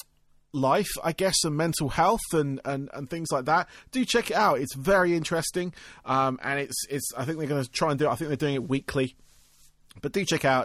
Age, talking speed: 30-49, 225 wpm